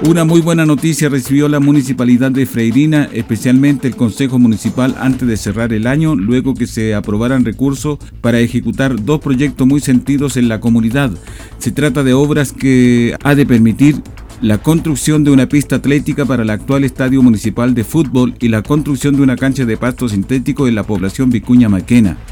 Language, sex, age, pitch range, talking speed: Spanish, male, 50-69, 110-135 Hz, 180 wpm